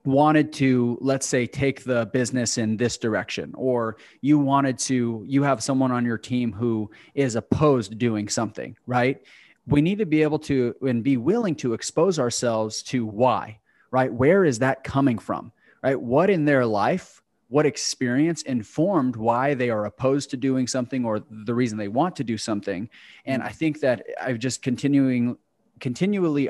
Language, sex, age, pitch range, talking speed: English, male, 30-49, 120-145 Hz, 175 wpm